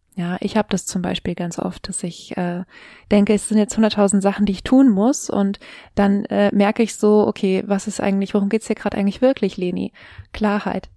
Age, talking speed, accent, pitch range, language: 20-39, 215 wpm, German, 190-215 Hz, German